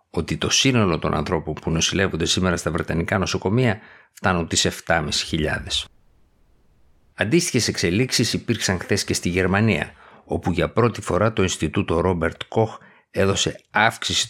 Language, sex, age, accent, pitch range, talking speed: Greek, male, 50-69, native, 85-105 Hz, 130 wpm